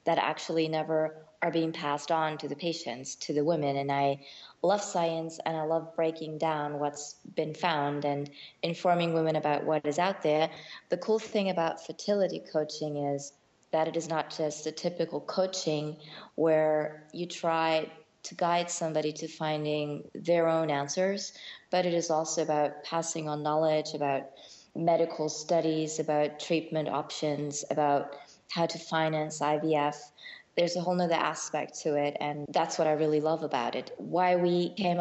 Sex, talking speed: female, 165 wpm